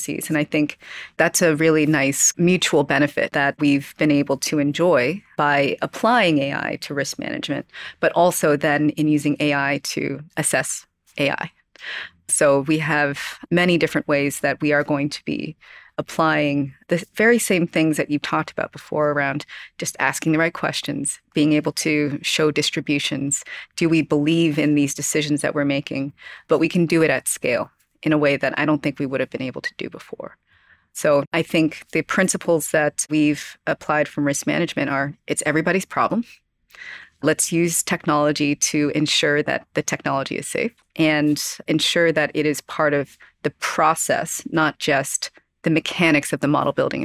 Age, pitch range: 30-49, 145-160 Hz